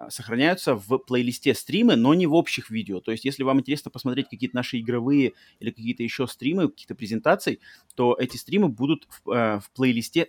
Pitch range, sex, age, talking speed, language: 120-150 Hz, male, 30-49, 190 wpm, Russian